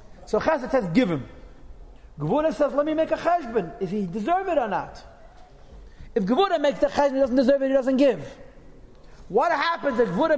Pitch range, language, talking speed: 165-275 Hz, English, 195 wpm